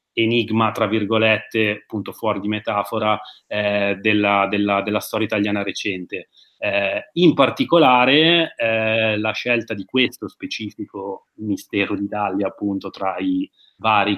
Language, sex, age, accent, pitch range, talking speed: Italian, male, 30-49, native, 100-115 Hz, 125 wpm